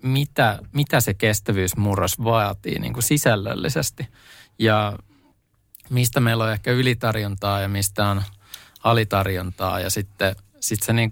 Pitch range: 100-115 Hz